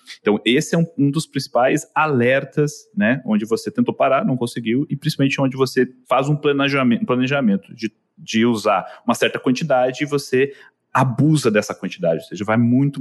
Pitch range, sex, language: 120-170 Hz, male, Portuguese